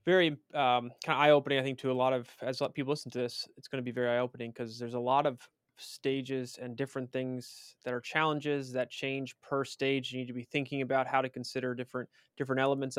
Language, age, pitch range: English, 20-39, 125-135 Hz